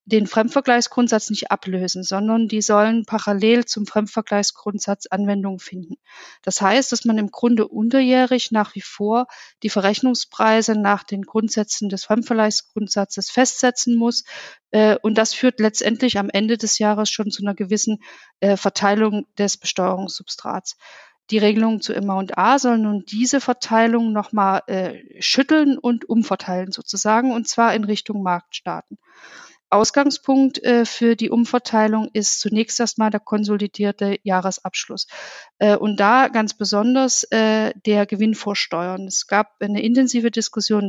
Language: German